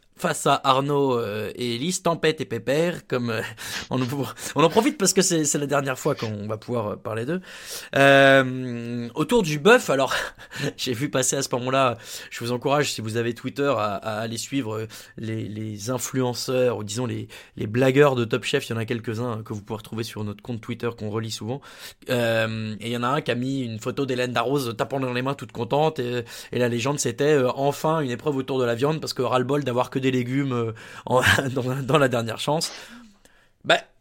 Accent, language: French, French